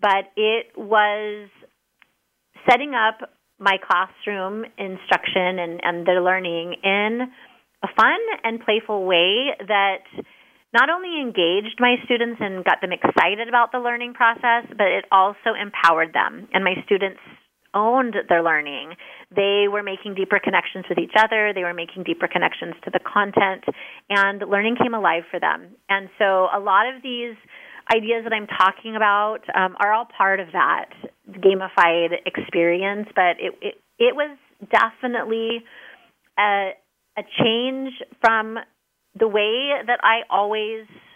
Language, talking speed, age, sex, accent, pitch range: English, 145 wpm, 30-49, female, American, 180-230 Hz